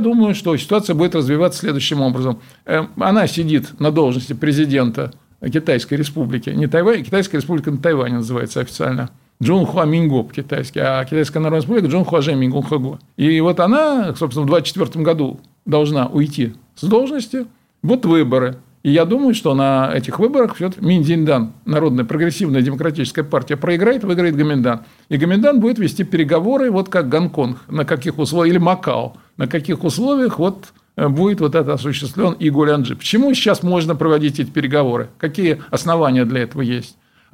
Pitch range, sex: 145-180 Hz, male